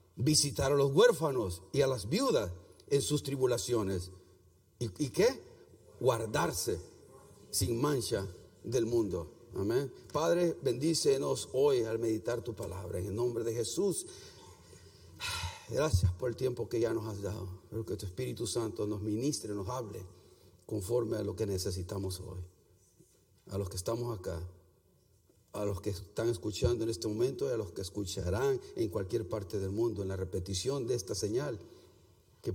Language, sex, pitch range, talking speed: Spanish, male, 95-135 Hz, 155 wpm